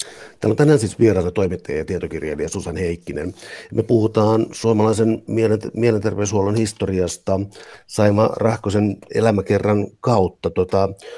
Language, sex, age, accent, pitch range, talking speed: Finnish, male, 60-79, native, 90-105 Hz, 100 wpm